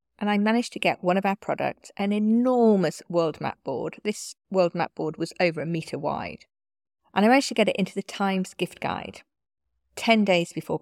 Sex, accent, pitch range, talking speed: female, British, 150-220 Hz, 205 wpm